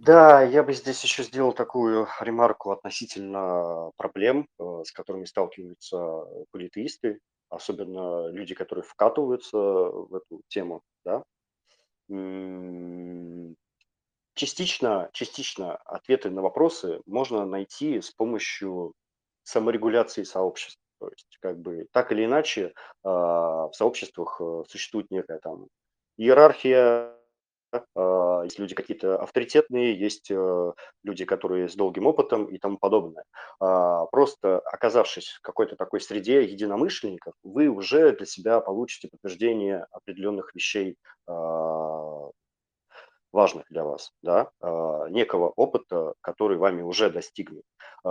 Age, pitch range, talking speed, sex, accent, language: 30-49, 90-145 Hz, 110 wpm, male, native, Russian